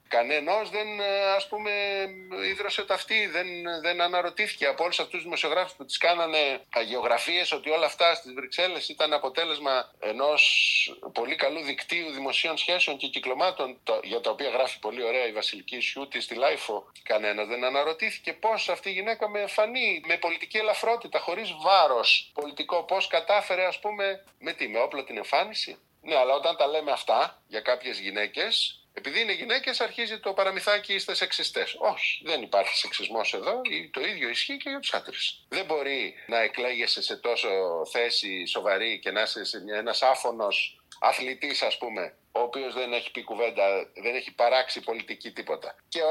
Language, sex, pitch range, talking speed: Greek, male, 150-215 Hz, 165 wpm